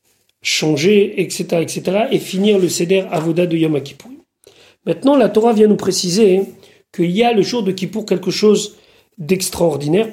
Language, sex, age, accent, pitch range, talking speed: French, male, 40-59, French, 175-210 Hz, 160 wpm